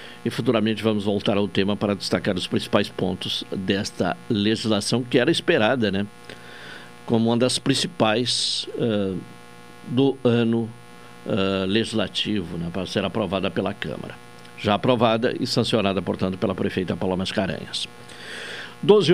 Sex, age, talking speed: male, 60-79, 135 wpm